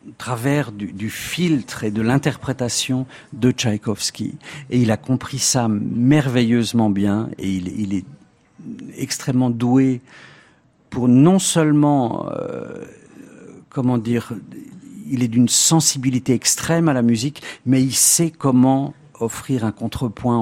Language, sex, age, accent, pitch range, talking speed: French, male, 50-69, French, 110-130 Hz, 125 wpm